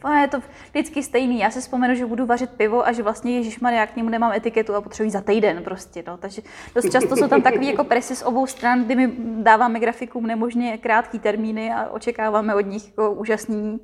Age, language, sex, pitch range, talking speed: 20-39, Czech, female, 215-255 Hz, 230 wpm